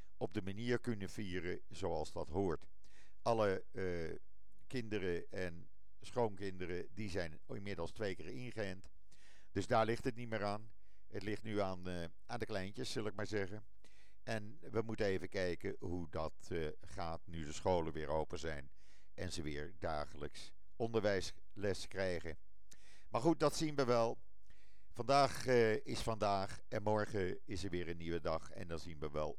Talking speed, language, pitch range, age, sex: 165 wpm, Dutch, 85-115 Hz, 50-69, male